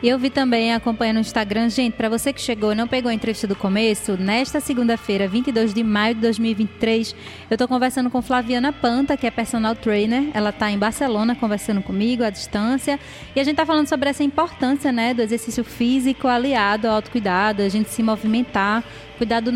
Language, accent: Portuguese, Brazilian